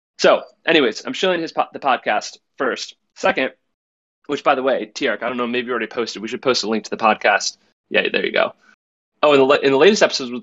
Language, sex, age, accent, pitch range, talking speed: English, male, 20-39, American, 115-160 Hz, 240 wpm